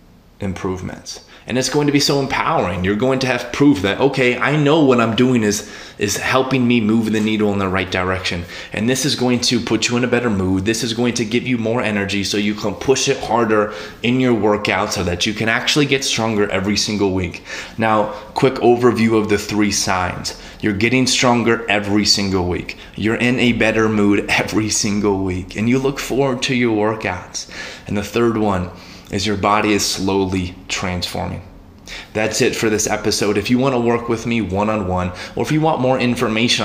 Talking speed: 205 wpm